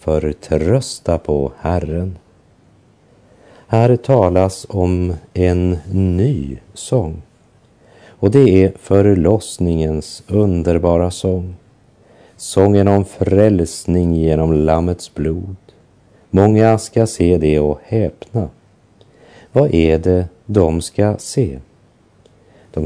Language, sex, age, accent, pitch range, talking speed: French, male, 50-69, Swedish, 80-110 Hz, 95 wpm